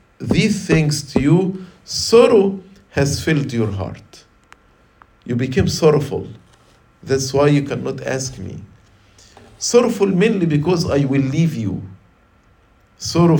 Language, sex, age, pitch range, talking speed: English, male, 50-69, 115-155 Hz, 115 wpm